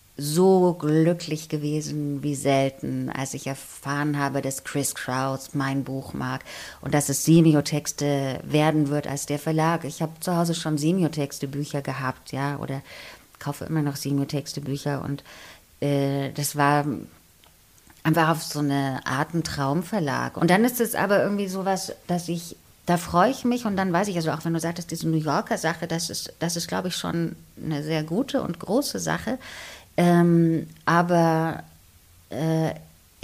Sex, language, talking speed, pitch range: female, German, 160 wpm, 140-170 Hz